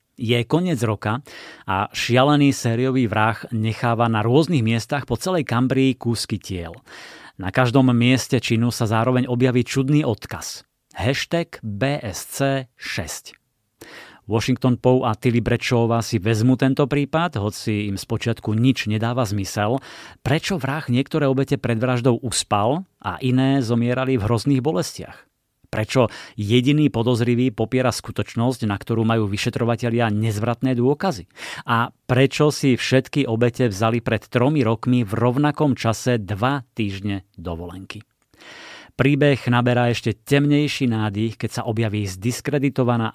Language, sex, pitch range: Slovak, male, 110-130 Hz